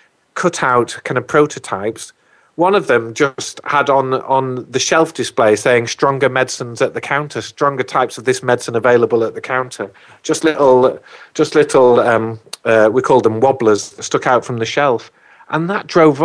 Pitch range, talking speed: 120-160 Hz, 175 wpm